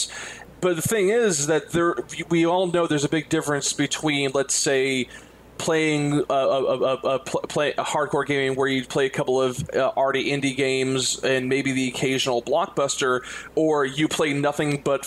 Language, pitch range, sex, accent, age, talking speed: English, 135-180 Hz, male, American, 30-49, 185 wpm